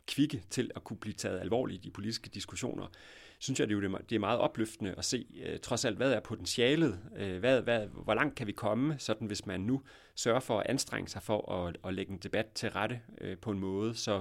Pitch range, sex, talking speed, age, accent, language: 95-120 Hz, male, 230 wpm, 30-49, native, Danish